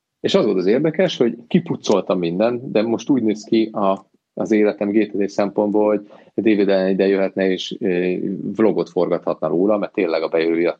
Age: 40-59